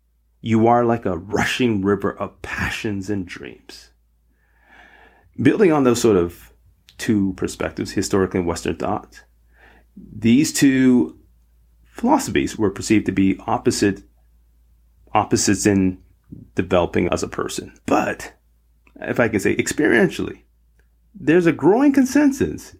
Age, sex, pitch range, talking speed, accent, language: 30-49, male, 90-120 Hz, 115 wpm, American, English